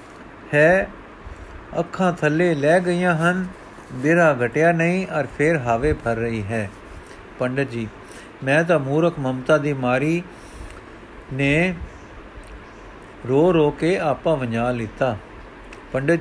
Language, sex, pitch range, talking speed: Punjabi, male, 125-165 Hz, 115 wpm